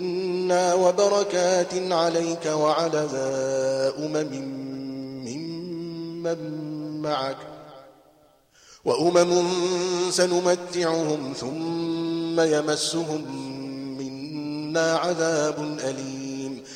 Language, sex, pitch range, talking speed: Arabic, male, 135-165 Hz, 50 wpm